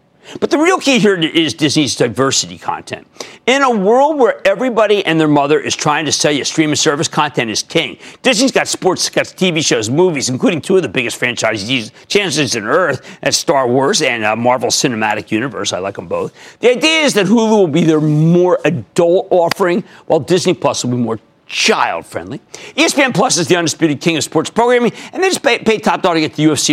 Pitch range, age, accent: 140-215 Hz, 50-69, American